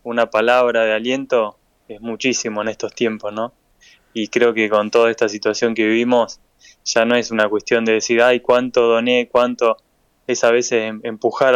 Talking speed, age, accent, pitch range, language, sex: 175 wpm, 20-39, Argentinian, 115-130 Hz, Spanish, male